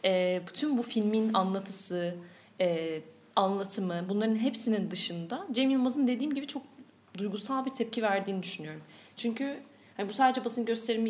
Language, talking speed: Turkish, 140 wpm